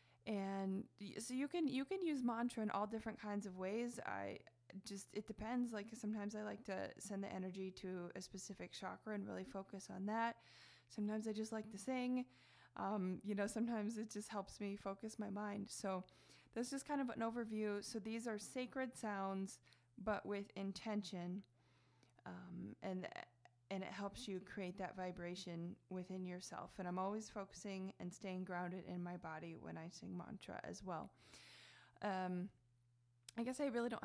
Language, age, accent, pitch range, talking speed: English, 20-39, American, 180-215 Hz, 180 wpm